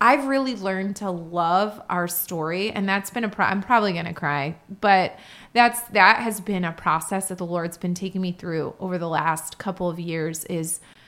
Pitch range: 175-230 Hz